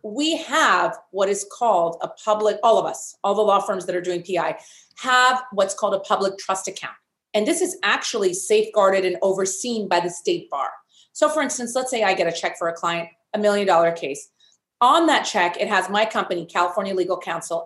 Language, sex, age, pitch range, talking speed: English, female, 30-49, 185-255 Hz, 210 wpm